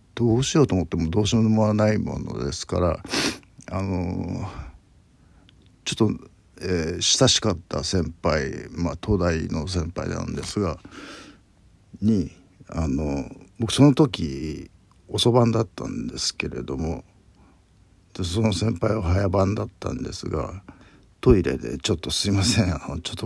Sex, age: male, 50-69